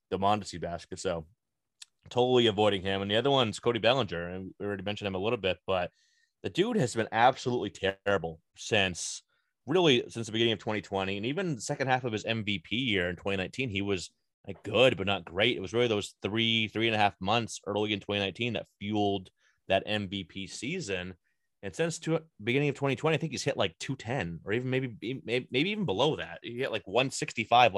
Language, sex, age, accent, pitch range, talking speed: English, male, 30-49, American, 95-125 Hz, 205 wpm